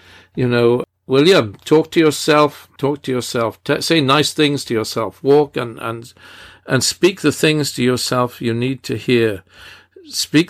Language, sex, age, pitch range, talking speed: English, male, 50-69, 95-135 Hz, 170 wpm